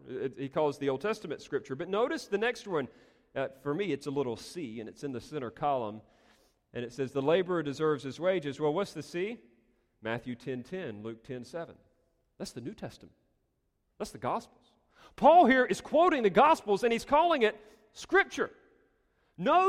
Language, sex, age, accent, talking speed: English, male, 40-59, American, 190 wpm